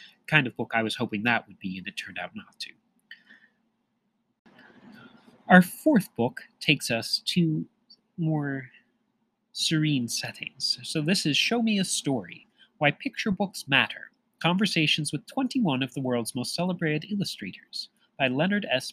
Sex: male